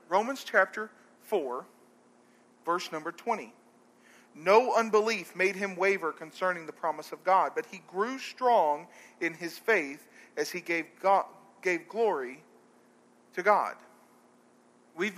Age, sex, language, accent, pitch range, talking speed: 40-59, male, English, American, 155-200 Hz, 125 wpm